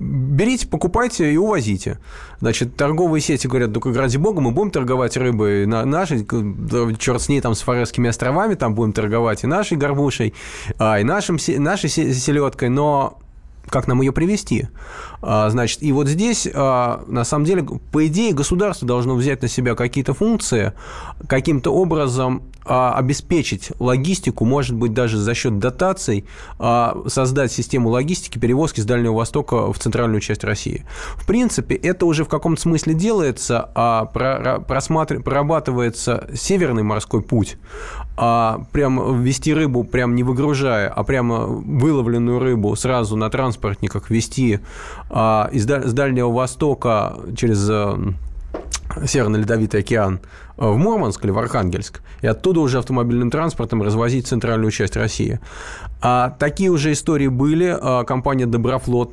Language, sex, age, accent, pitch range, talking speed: Russian, male, 20-39, native, 115-145 Hz, 130 wpm